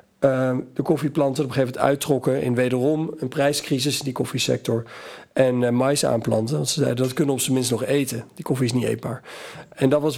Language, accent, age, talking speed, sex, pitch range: Dutch, Dutch, 40-59, 225 wpm, male, 125-145 Hz